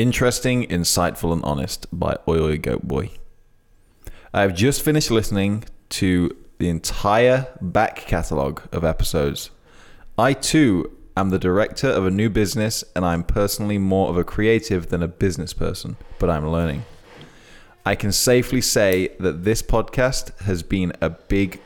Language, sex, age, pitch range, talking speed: English, male, 20-39, 90-110 Hz, 145 wpm